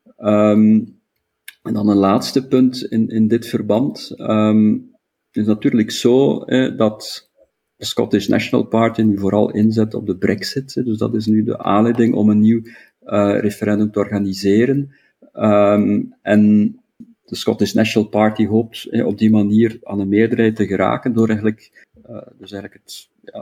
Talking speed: 165 wpm